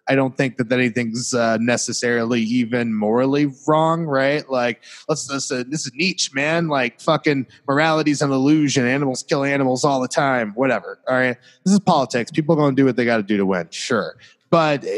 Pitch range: 120-150 Hz